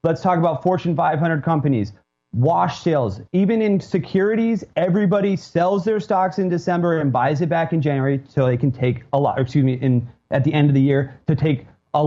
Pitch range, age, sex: 145-185 Hz, 30-49, male